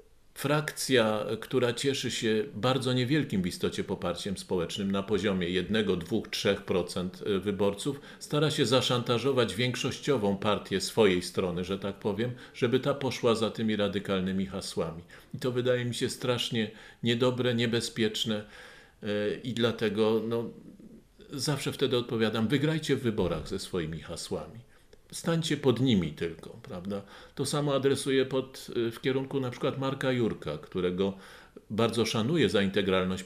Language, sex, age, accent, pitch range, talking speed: Polish, male, 50-69, native, 105-130 Hz, 130 wpm